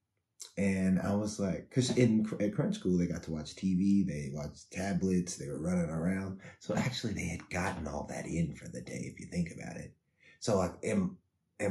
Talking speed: 205 wpm